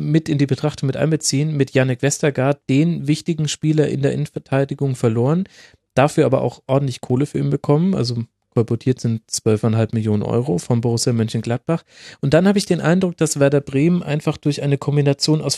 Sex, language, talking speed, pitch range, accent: male, German, 180 wpm, 120-150 Hz, German